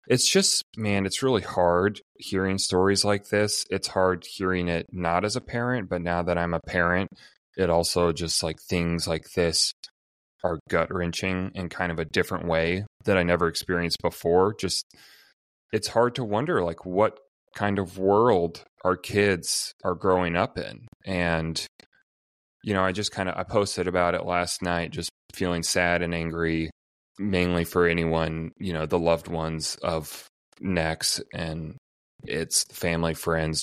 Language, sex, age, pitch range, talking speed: English, male, 30-49, 85-105 Hz, 165 wpm